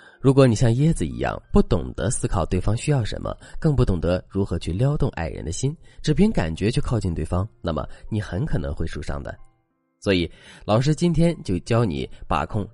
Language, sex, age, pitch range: Chinese, male, 20-39, 90-140 Hz